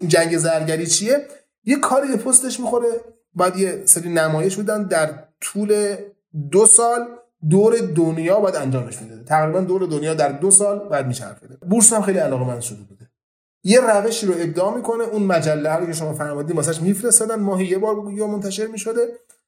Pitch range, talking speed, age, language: 135-205 Hz, 175 wpm, 30-49, Persian